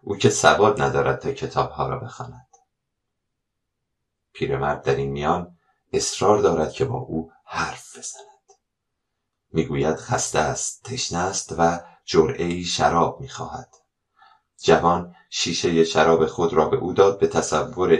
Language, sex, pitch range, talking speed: Persian, male, 80-100 Hz, 125 wpm